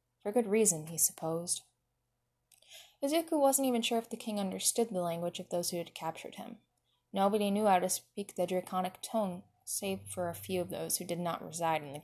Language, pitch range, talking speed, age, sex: English, 175-225 Hz, 205 wpm, 10-29, female